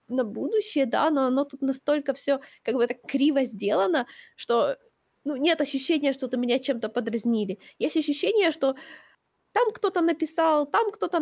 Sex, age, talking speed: female, 20-39, 155 wpm